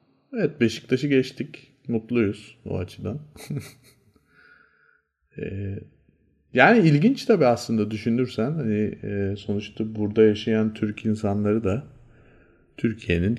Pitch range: 100-125 Hz